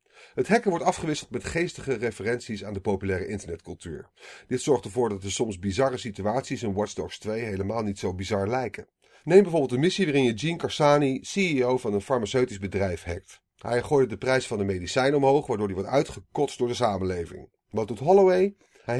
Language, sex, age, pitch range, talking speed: Dutch, male, 40-59, 100-135 Hz, 195 wpm